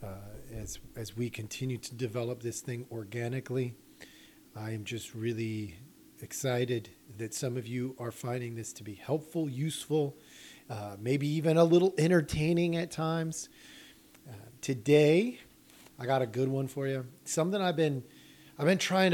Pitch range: 125-180 Hz